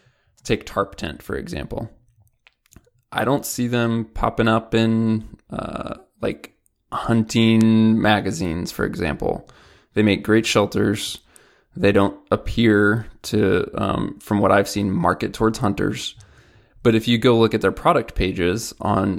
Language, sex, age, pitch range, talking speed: English, male, 20-39, 95-115 Hz, 140 wpm